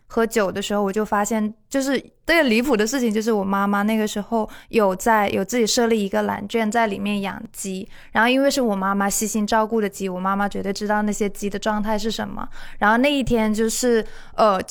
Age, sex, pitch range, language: 20-39, female, 205-240 Hz, Chinese